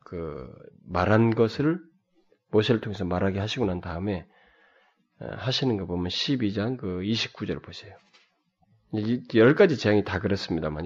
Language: Korean